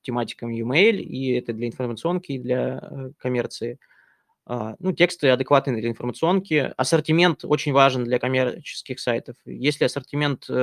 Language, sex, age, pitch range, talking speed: Russian, male, 20-39, 120-155 Hz, 135 wpm